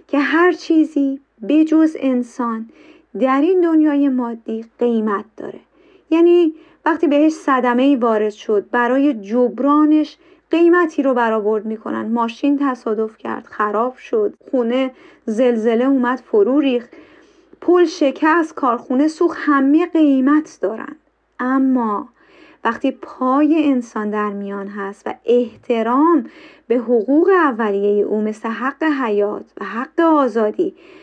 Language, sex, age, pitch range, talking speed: Persian, female, 30-49, 230-305 Hz, 115 wpm